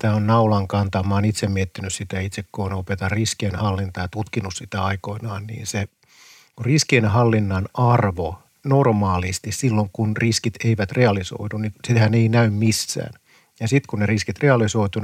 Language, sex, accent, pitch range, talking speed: Finnish, male, native, 105-125 Hz, 160 wpm